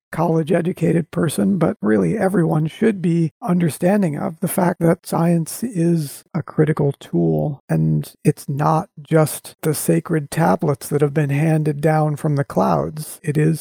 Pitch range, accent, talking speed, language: 150-175 Hz, American, 155 wpm, English